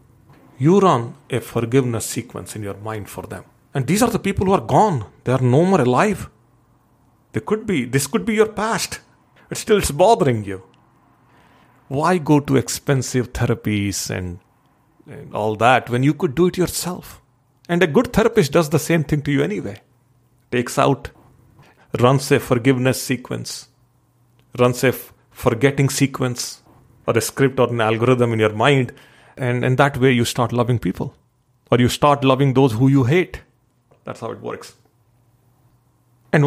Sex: male